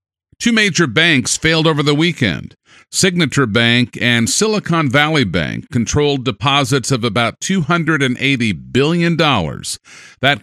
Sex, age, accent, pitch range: male, 50-69, American, 115-160 Hz